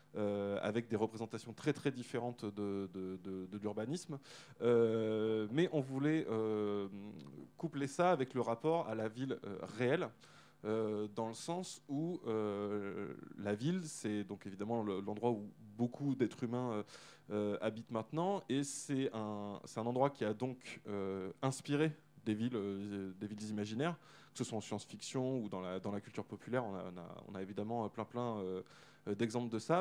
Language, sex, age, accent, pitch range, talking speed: French, male, 20-39, French, 105-130 Hz, 155 wpm